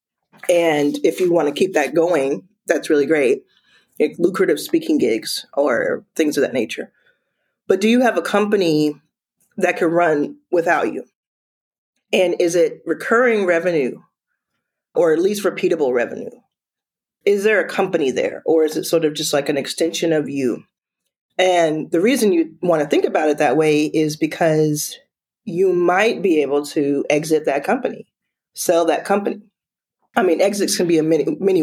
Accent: American